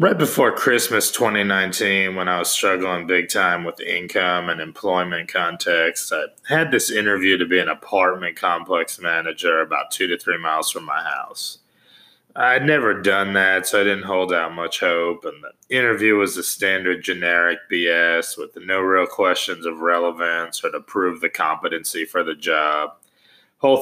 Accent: American